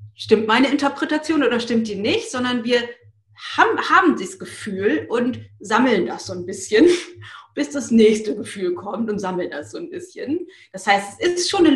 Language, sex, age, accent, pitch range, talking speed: German, female, 30-49, German, 220-295 Hz, 185 wpm